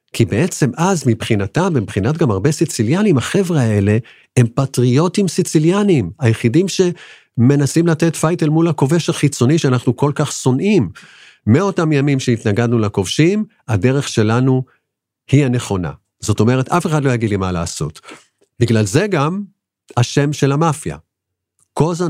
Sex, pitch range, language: male, 105-150 Hz, Hebrew